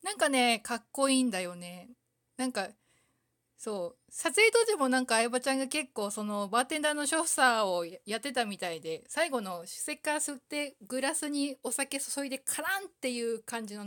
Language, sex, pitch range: Japanese, female, 185-255 Hz